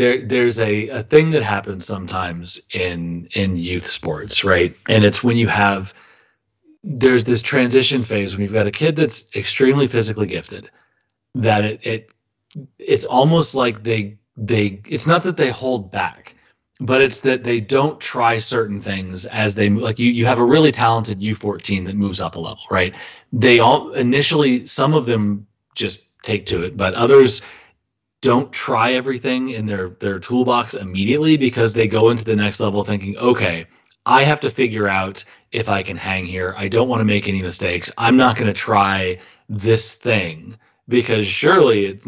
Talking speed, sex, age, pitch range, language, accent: 180 wpm, male, 30-49, 100-125 Hz, English, American